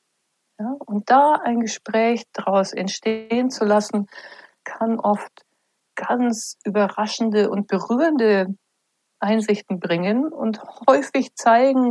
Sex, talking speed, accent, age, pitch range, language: female, 100 wpm, German, 60-79, 180-225 Hz, German